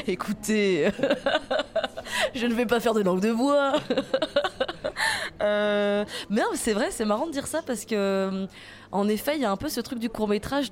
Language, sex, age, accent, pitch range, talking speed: French, female, 20-39, French, 175-230 Hz, 180 wpm